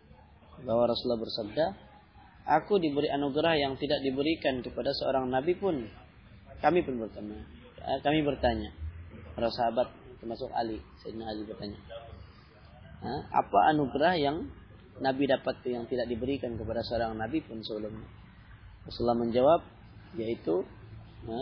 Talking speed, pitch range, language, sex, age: 120 wpm, 110-140 Hz, Malay, male, 20-39